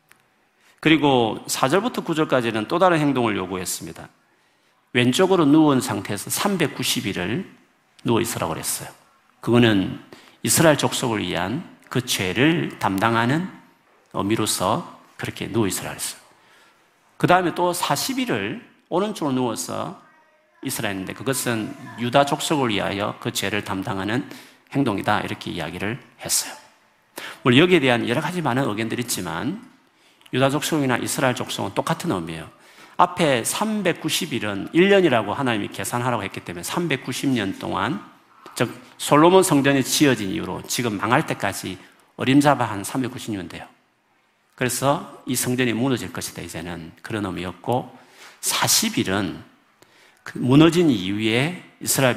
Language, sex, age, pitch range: Korean, male, 40-59, 110-155 Hz